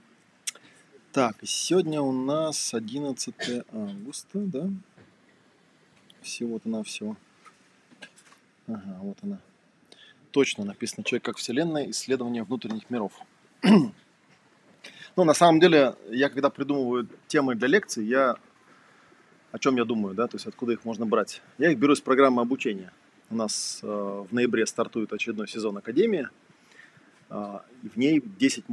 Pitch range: 115-150 Hz